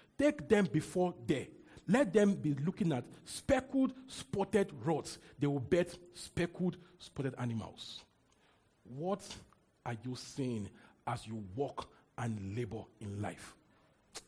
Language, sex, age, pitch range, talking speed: English, male, 50-69, 130-215 Hz, 125 wpm